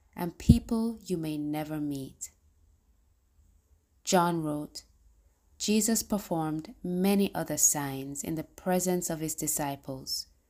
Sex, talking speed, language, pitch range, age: female, 110 wpm, English, 135-180 Hz, 20-39